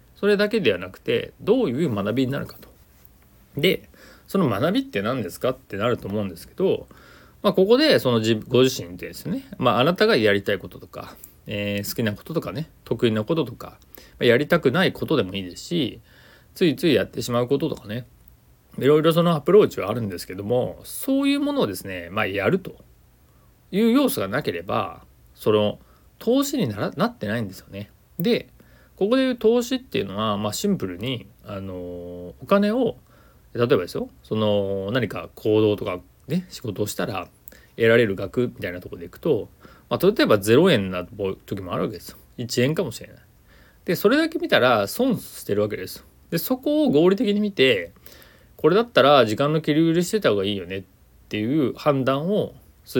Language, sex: Japanese, male